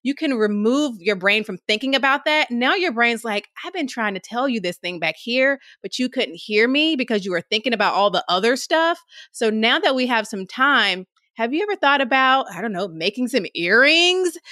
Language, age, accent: English, 30-49, American